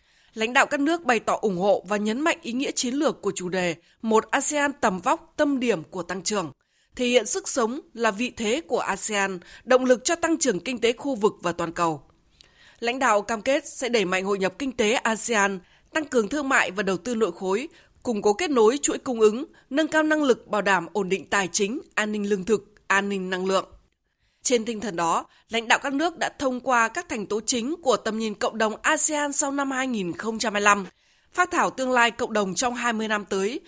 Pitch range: 205-275 Hz